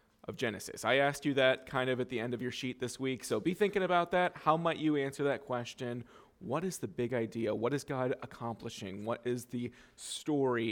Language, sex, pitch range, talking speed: English, male, 120-150 Hz, 225 wpm